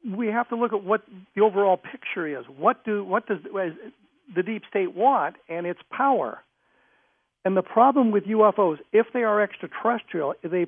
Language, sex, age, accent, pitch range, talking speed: English, male, 60-79, American, 170-220 Hz, 190 wpm